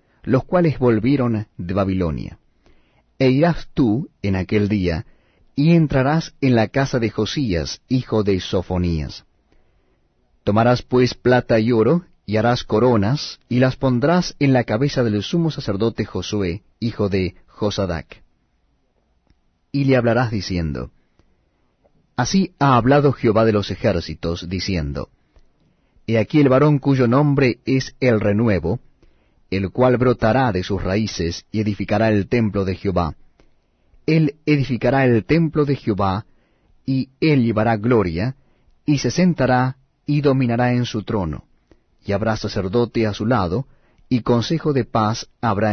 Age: 40-59